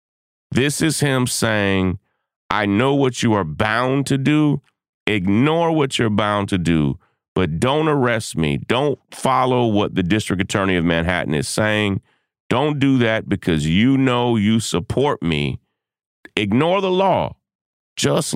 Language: English